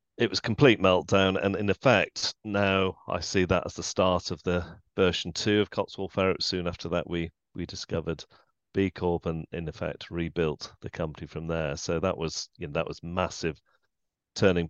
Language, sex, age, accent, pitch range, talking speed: English, male, 40-59, British, 85-105 Hz, 190 wpm